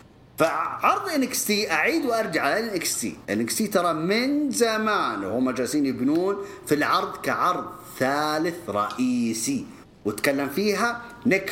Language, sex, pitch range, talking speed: English, male, 165-250 Hz, 115 wpm